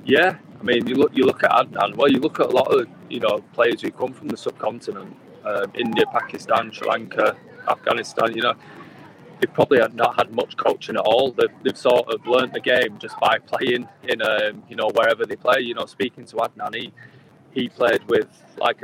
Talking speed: 215 wpm